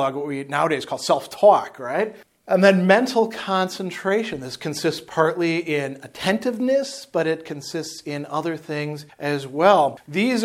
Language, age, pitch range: English, 40-59, 145-180 Hz